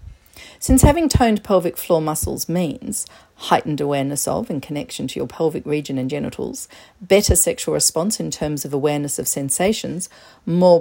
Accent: Australian